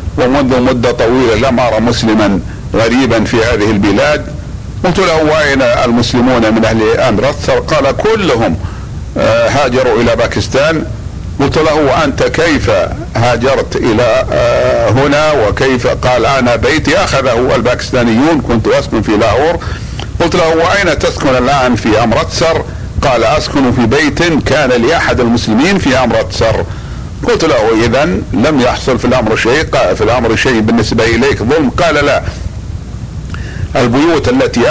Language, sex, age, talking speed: Arabic, male, 50-69, 130 wpm